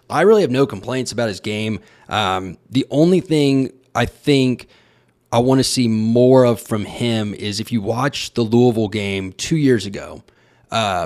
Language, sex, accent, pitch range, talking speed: English, male, American, 105-140 Hz, 180 wpm